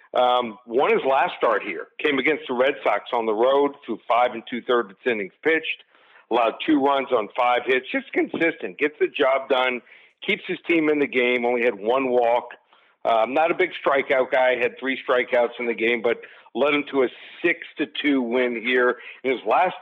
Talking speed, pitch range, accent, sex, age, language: 205 wpm, 125-155 Hz, American, male, 50-69, English